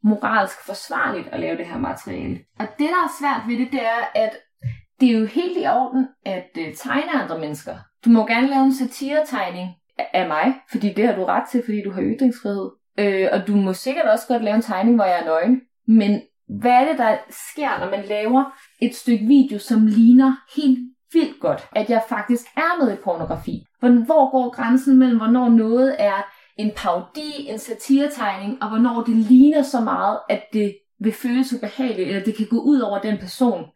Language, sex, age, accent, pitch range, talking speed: Danish, female, 20-39, native, 205-265 Hz, 200 wpm